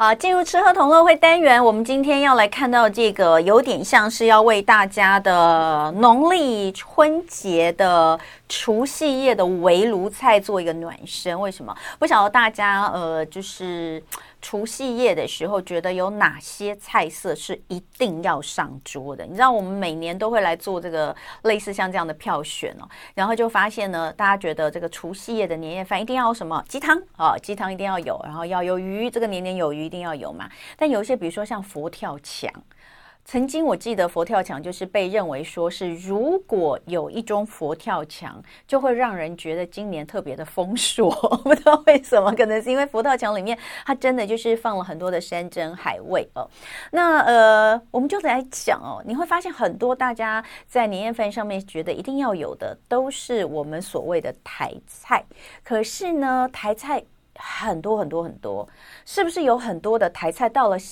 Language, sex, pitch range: Chinese, female, 175-245 Hz